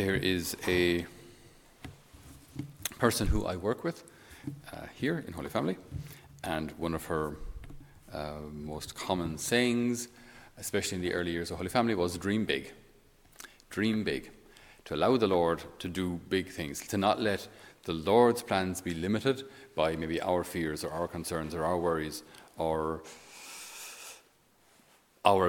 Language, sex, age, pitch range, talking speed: English, male, 40-59, 85-105 Hz, 145 wpm